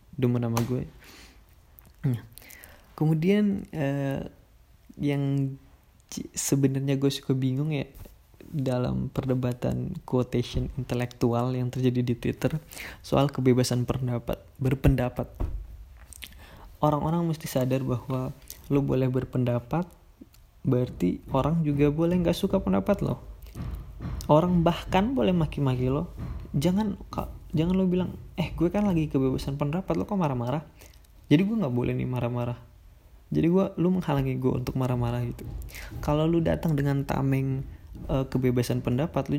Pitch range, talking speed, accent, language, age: 120-150 Hz, 120 wpm, native, Indonesian, 20-39